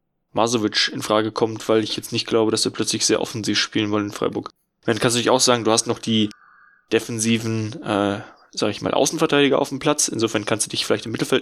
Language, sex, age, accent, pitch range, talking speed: German, male, 10-29, German, 110-140 Hz, 230 wpm